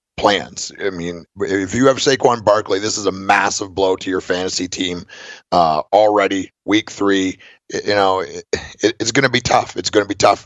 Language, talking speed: English, 190 wpm